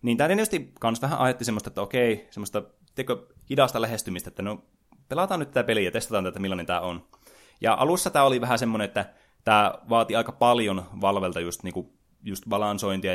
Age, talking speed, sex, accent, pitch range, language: 20-39, 190 wpm, male, native, 95-120 Hz, Finnish